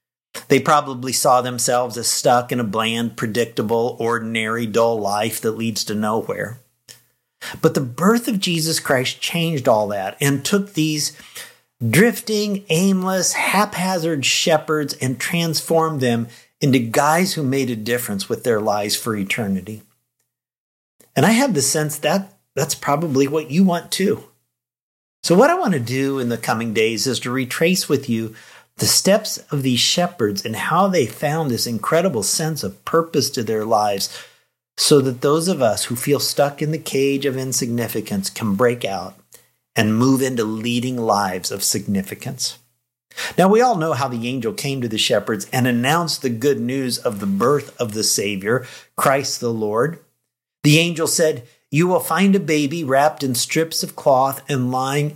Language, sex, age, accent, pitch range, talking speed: English, male, 50-69, American, 115-160 Hz, 170 wpm